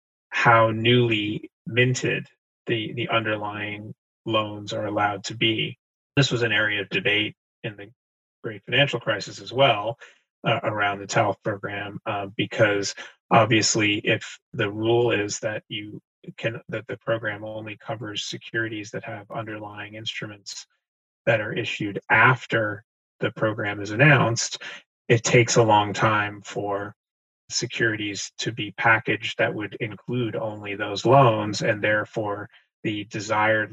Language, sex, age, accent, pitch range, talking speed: English, male, 30-49, American, 105-120 Hz, 135 wpm